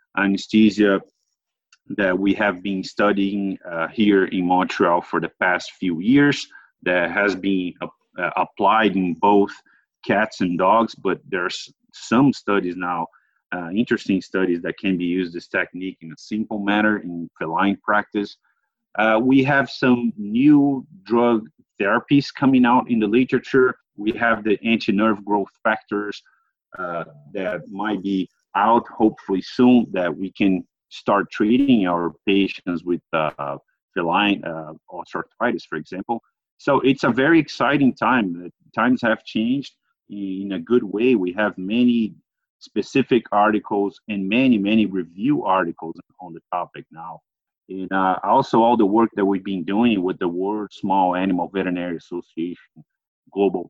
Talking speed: 145 wpm